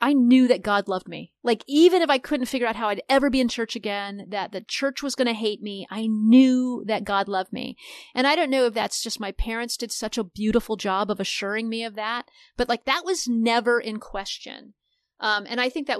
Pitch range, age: 200-250 Hz, 40-59